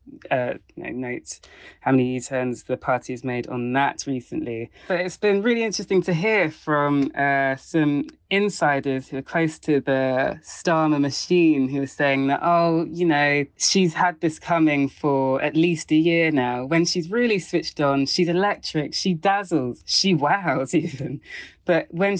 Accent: British